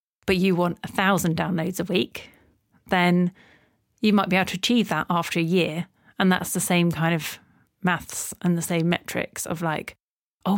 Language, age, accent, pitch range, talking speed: English, 30-49, British, 170-205 Hz, 185 wpm